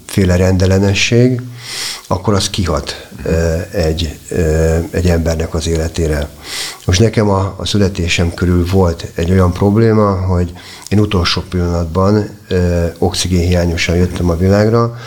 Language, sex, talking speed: Hungarian, male, 125 wpm